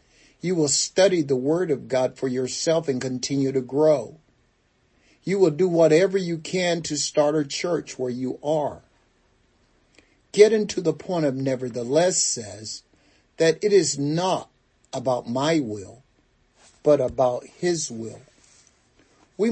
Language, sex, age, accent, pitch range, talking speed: English, male, 50-69, American, 130-160 Hz, 140 wpm